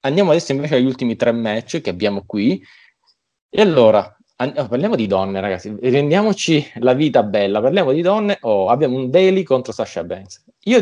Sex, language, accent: male, Italian, native